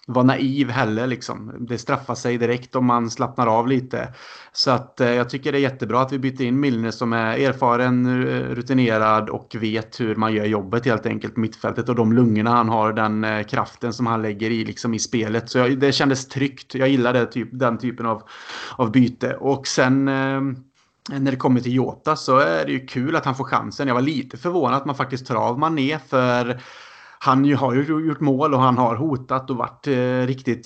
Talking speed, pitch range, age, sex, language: 215 wpm, 115-135 Hz, 30-49, male, Swedish